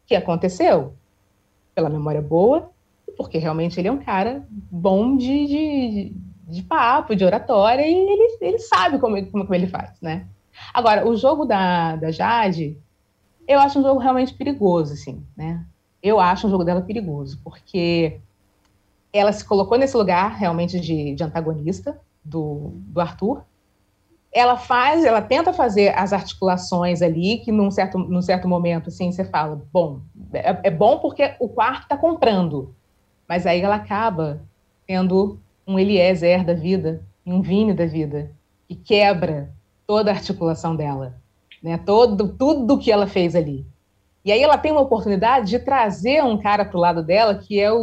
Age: 30-49